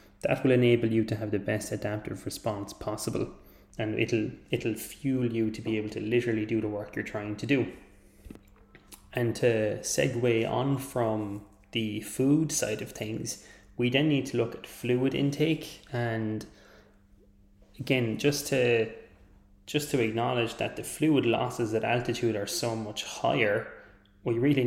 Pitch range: 110-120 Hz